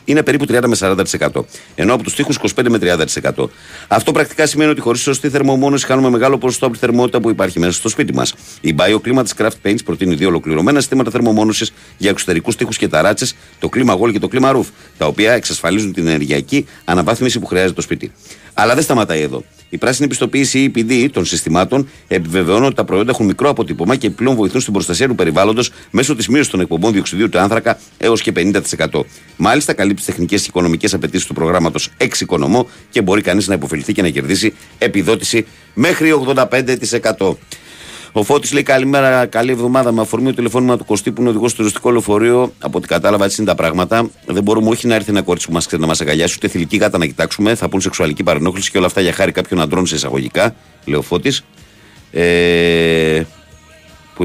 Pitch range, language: 85-125 Hz, Greek